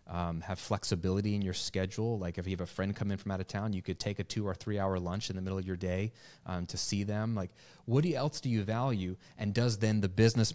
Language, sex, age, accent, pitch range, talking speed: English, male, 30-49, American, 90-110 Hz, 275 wpm